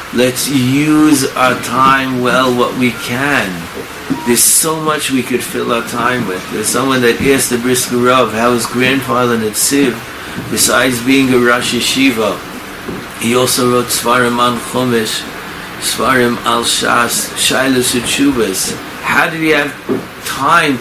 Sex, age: male, 60-79